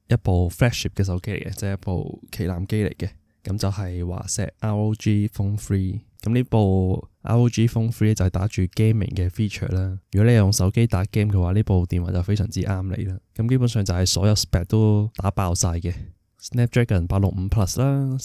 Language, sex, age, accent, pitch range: Chinese, male, 20-39, native, 95-110 Hz